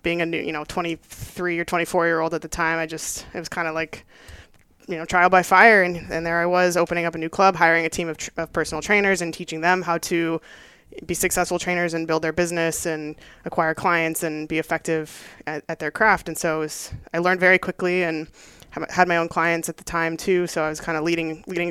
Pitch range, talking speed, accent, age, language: 160-175 Hz, 250 wpm, American, 20-39, English